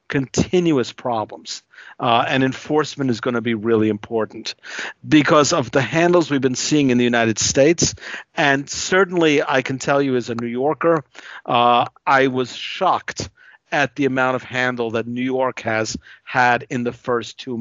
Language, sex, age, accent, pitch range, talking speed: English, male, 50-69, American, 120-140 Hz, 170 wpm